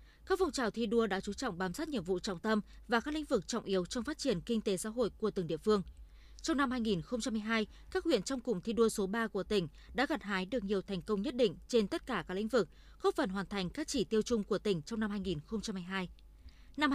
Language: Vietnamese